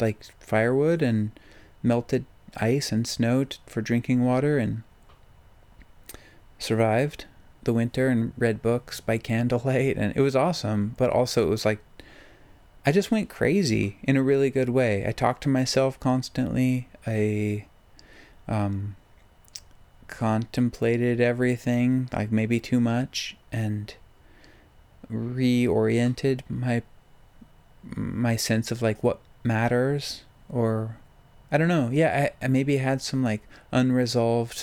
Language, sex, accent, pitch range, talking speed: English, male, American, 110-130 Hz, 125 wpm